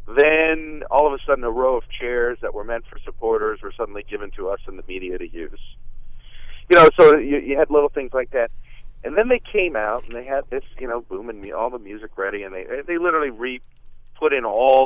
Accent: American